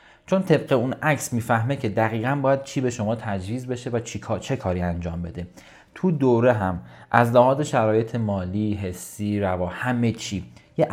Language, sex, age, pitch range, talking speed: Persian, male, 30-49, 100-140 Hz, 175 wpm